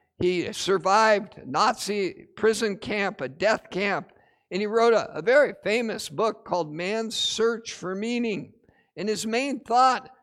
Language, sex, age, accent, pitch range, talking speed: English, male, 60-79, American, 185-240 Hz, 155 wpm